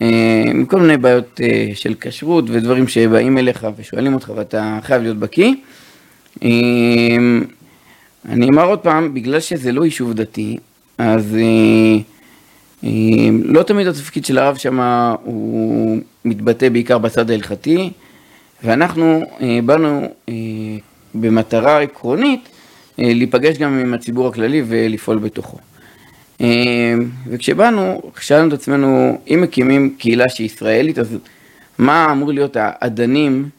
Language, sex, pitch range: Hebrew, male, 110-140 Hz